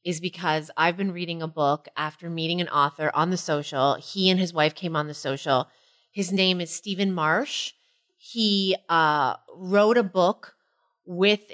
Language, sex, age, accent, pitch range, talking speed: English, female, 30-49, American, 165-215 Hz, 170 wpm